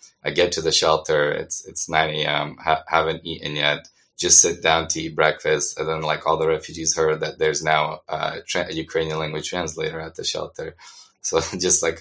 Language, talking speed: English, 195 wpm